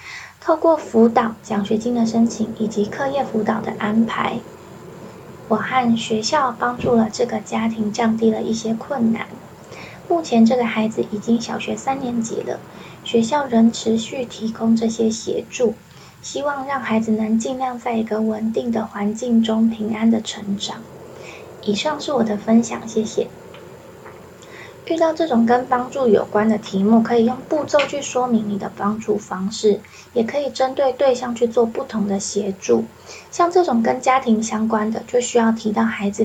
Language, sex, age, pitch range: Chinese, female, 20-39, 215-245 Hz